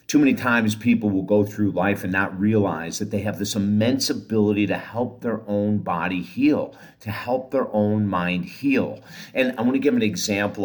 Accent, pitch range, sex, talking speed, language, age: American, 95-110 Hz, male, 205 wpm, English, 50-69